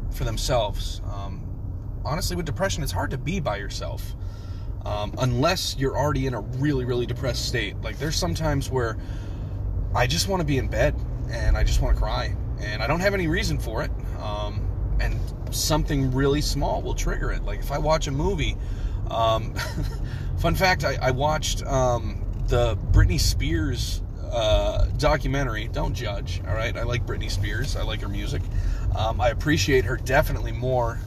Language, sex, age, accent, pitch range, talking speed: English, male, 30-49, American, 100-130 Hz, 175 wpm